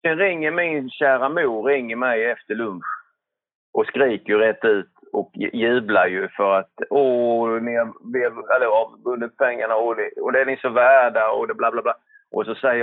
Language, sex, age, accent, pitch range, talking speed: Swedish, male, 30-49, native, 115-180 Hz, 175 wpm